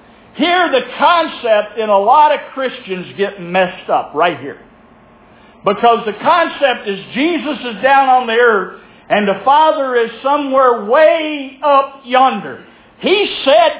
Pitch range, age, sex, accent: 235-310 Hz, 60-79, male, American